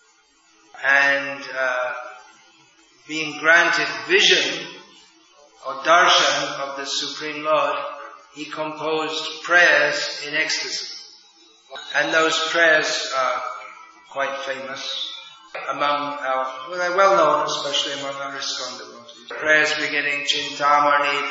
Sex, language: male, English